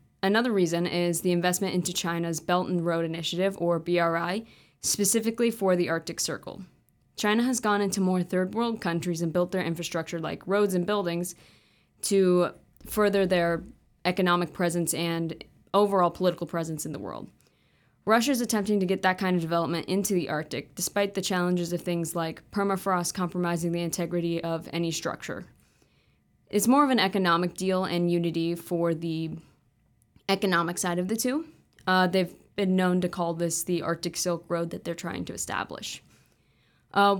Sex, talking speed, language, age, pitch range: female, 165 wpm, English, 20-39, 170-195 Hz